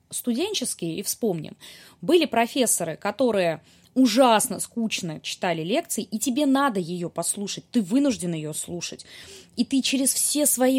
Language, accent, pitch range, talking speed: Russian, native, 195-260 Hz, 135 wpm